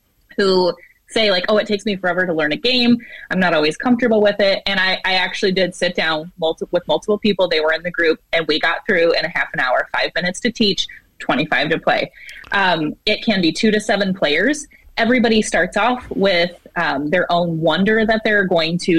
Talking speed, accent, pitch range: 220 wpm, American, 175-220 Hz